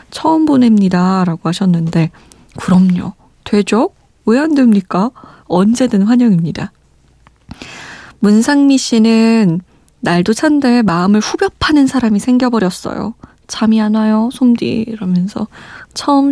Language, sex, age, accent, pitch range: Korean, female, 20-39, native, 190-250 Hz